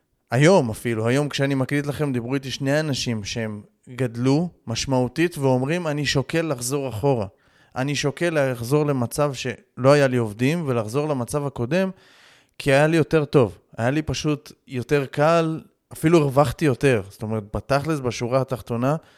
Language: Hebrew